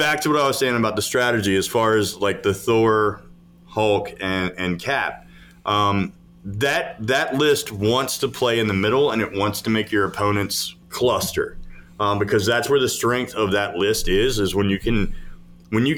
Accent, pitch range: American, 100-130 Hz